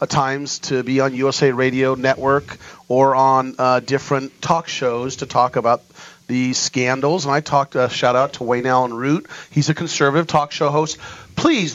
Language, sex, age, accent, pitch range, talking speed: English, male, 40-59, American, 130-180 Hz, 190 wpm